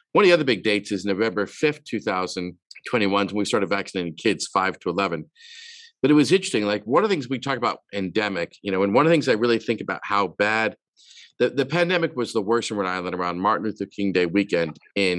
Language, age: English, 50-69